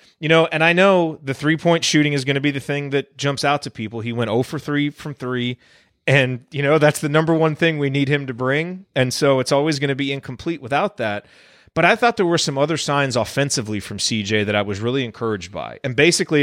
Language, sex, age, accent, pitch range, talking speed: English, male, 30-49, American, 125-155 Hz, 250 wpm